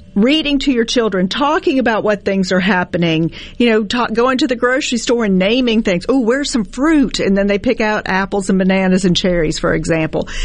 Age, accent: 40-59, American